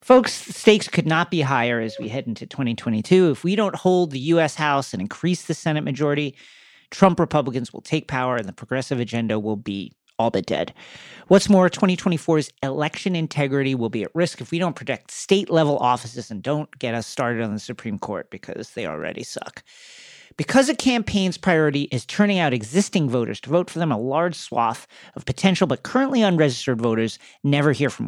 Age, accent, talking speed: 40-59, American, 190 wpm